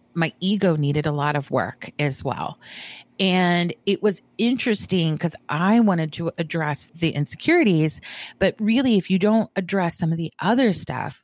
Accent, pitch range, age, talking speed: American, 155-210 Hz, 30-49, 165 wpm